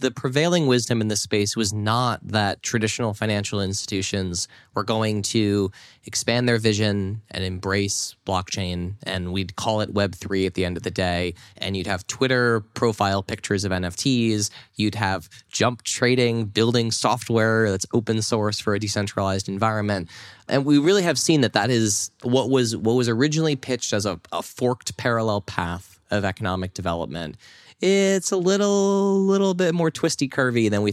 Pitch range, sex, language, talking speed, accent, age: 95-120 Hz, male, English, 165 wpm, American, 20-39